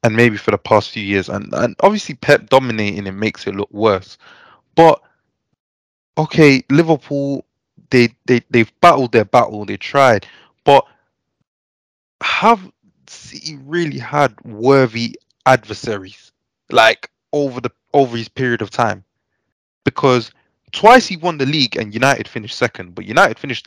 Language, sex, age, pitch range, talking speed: English, male, 20-39, 105-145 Hz, 140 wpm